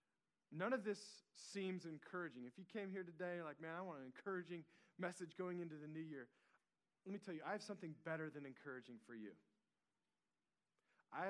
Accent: American